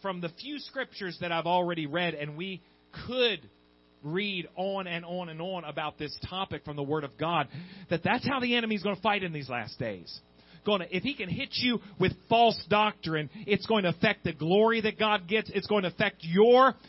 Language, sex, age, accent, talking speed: English, male, 40-59, American, 215 wpm